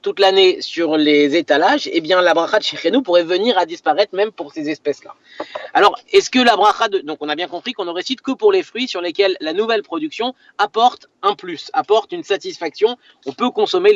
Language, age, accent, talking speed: French, 30-49, French, 220 wpm